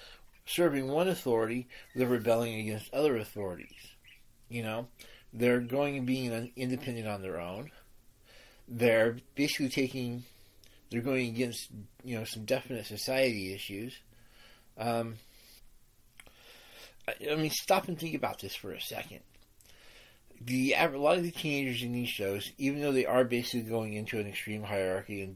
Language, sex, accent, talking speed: English, male, American, 145 wpm